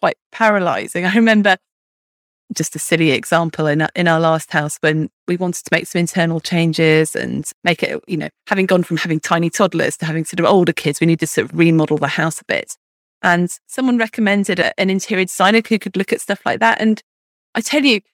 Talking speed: 215 wpm